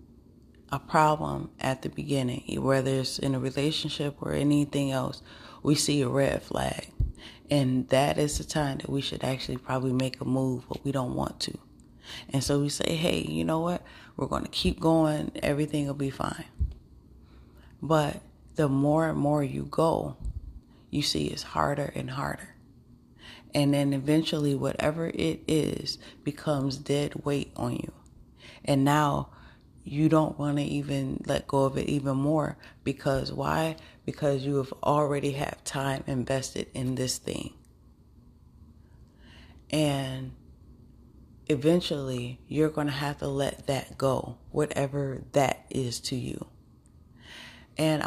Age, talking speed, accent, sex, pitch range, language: 30-49, 145 wpm, American, female, 130-150 Hz, English